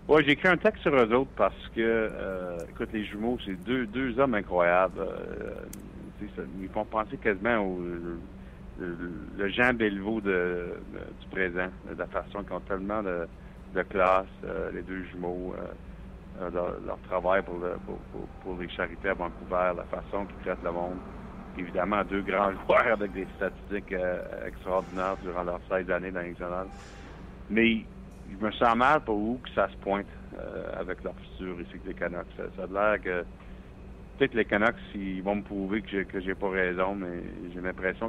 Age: 60-79